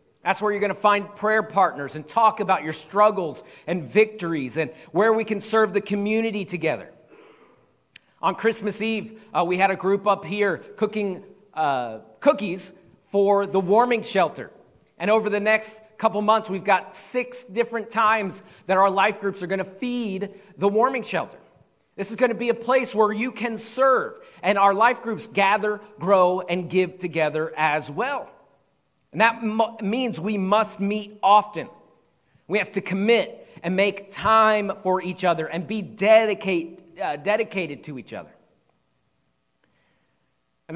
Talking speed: 165 wpm